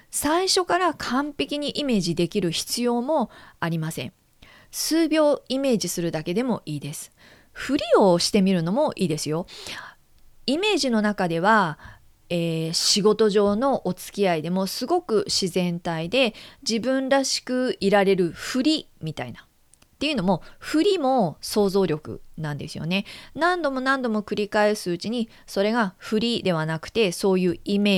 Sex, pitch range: female, 170-245 Hz